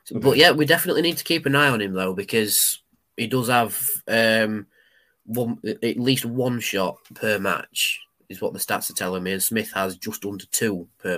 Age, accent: 20-39, British